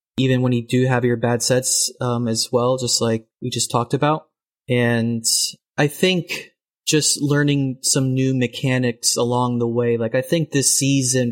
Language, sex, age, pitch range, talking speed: English, male, 30-49, 120-140 Hz, 175 wpm